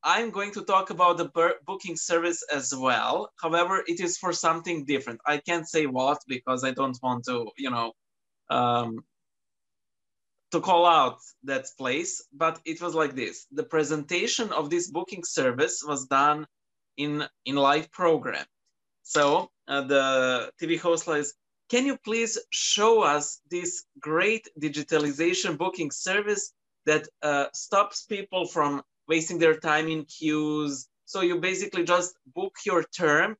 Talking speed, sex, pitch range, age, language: 150 wpm, male, 145-190 Hz, 20-39, English